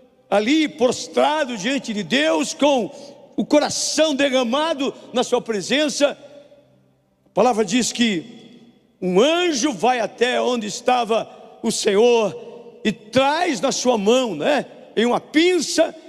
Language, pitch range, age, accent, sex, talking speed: Portuguese, 200-270 Hz, 50-69, Brazilian, male, 125 wpm